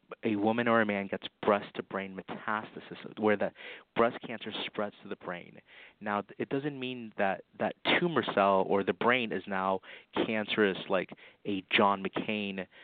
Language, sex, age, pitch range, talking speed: English, male, 30-49, 100-115 Hz, 160 wpm